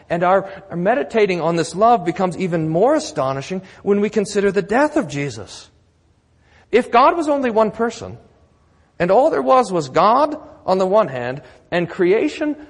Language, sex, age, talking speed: English, male, 40-59, 170 wpm